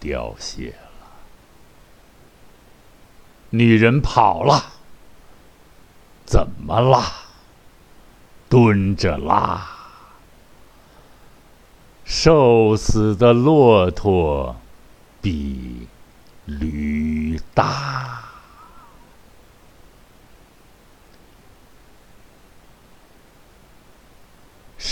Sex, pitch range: male, 75-120 Hz